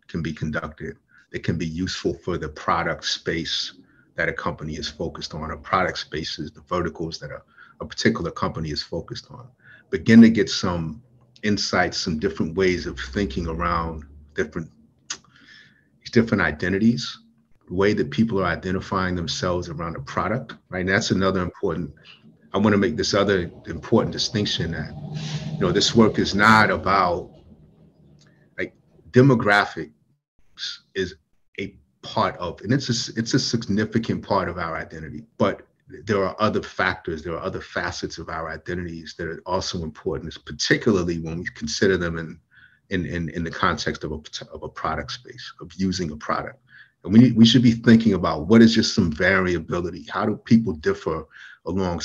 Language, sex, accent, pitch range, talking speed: English, male, American, 85-115 Hz, 165 wpm